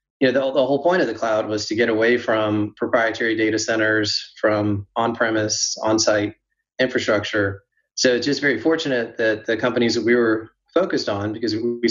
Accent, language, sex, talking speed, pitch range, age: American, English, male, 180 wpm, 105-120 Hz, 30-49